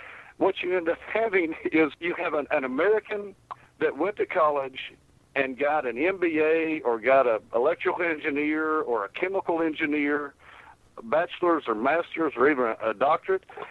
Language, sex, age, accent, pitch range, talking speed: English, male, 60-79, American, 155-215 Hz, 160 wpm